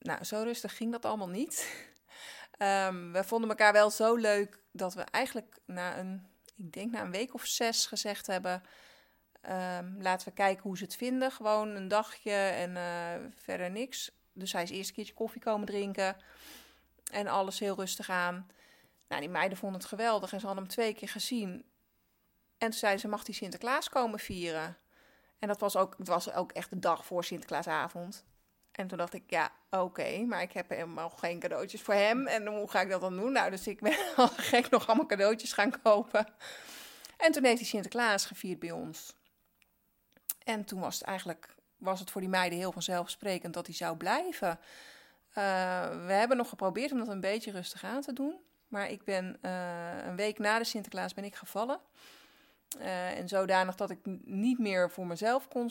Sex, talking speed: female, 190 wpm